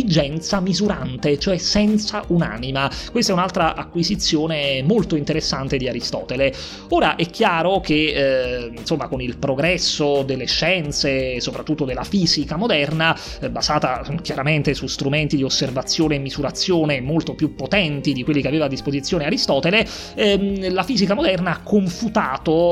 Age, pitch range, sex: 30-49, 140-175 Hz, male